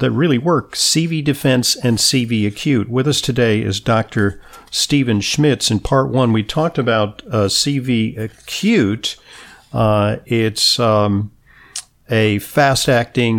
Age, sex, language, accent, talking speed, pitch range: 50-69, male, English, American, 130 wpm, 100-125 Hz